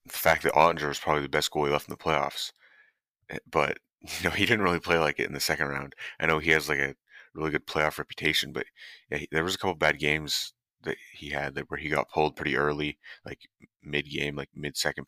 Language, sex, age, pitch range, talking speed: English, male, 30-49, 70-80 Hz, 245 wpm